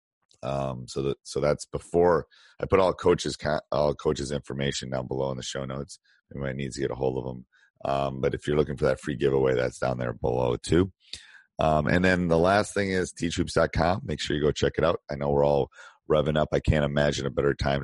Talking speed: 230 wpm